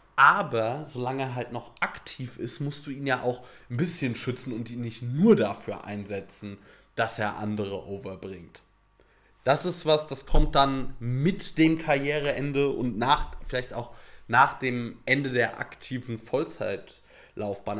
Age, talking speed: 30-49, 150 wpm